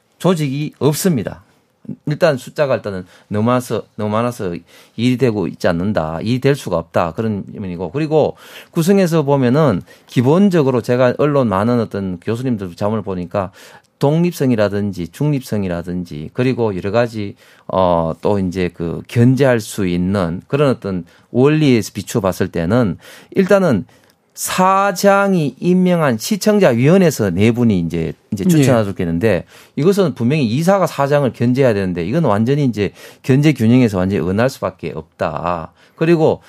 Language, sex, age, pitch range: Korean, male, 40-59, 100-155 Hz